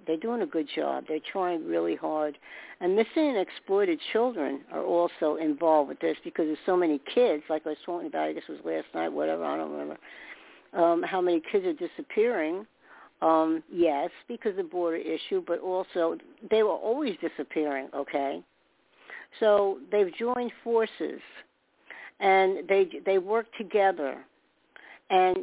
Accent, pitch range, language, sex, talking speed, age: American, 160-220 Hz, English, female, 165 wpm, 60-79